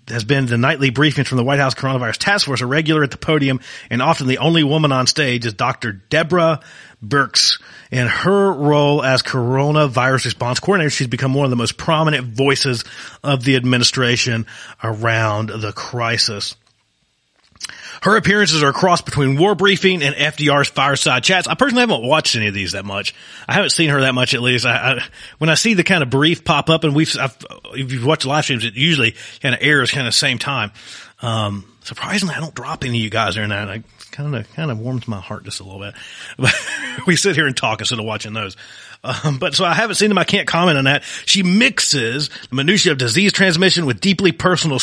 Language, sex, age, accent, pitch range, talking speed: English, male, 30-49, American, 115-155 Hz, 210 wpm